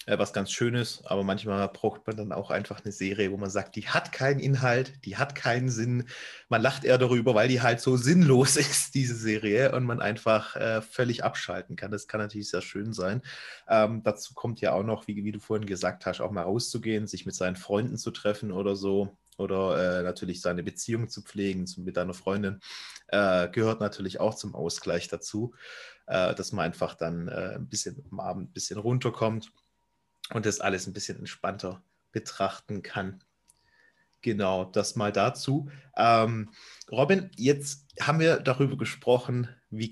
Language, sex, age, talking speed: German, male, 30-49, 180 wpm